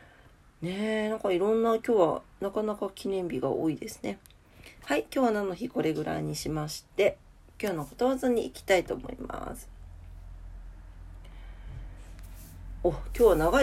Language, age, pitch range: Japanese, 40-59, 160-250 Hz